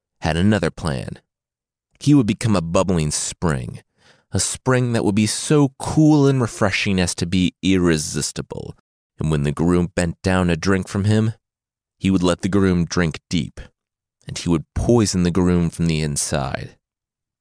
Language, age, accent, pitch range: English, 30-49, American, 85-110 Hz